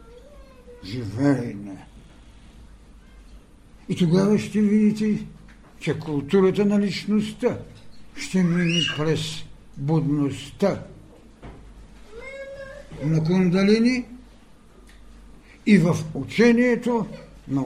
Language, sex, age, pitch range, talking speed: Bulgarian, male, 60-79, 135-190 Hz, 65 wpm